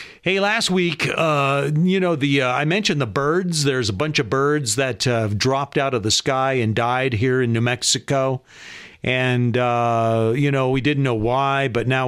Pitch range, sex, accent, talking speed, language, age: 125-155 Hz, male, American, 205 wpm, English, 50-69